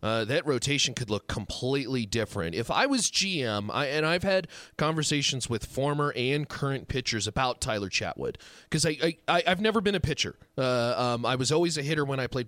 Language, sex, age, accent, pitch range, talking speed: English, male, 30-49, American, 130-205 Hz, 210 wpm